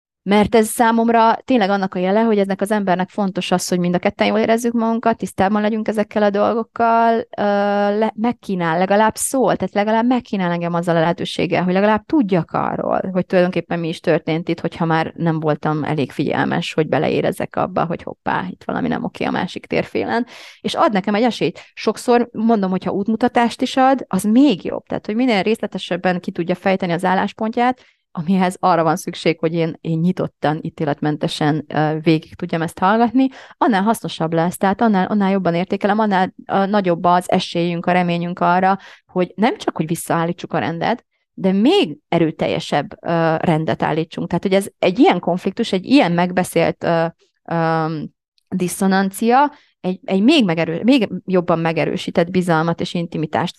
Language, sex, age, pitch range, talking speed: Hungarian, female, 30-49, 170-220 Hz, 165 wpm